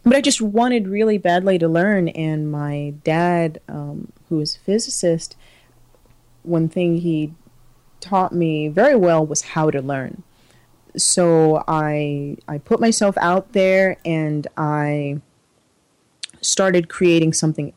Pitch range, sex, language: 145-170 Hz, female, English